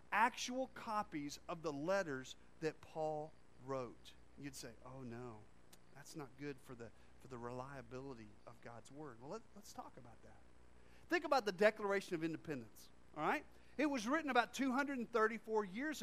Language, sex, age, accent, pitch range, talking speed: English, male, 40-59, American, 155-230 Hz, 155 wpm